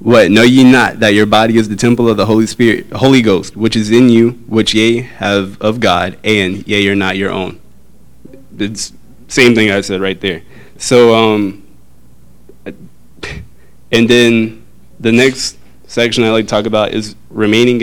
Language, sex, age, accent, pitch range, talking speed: English, male, 20-39, American, 100-120 Hz, 175 wpm